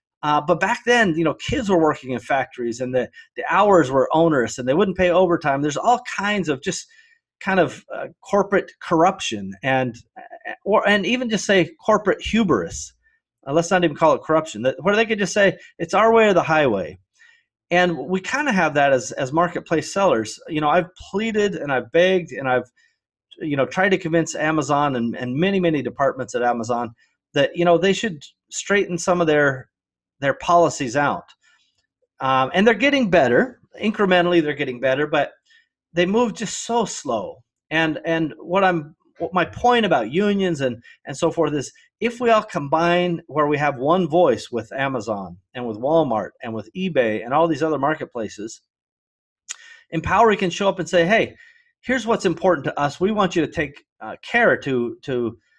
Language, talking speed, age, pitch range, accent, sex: English, 190 wpm, 30-49, 140-205 Hz, American, male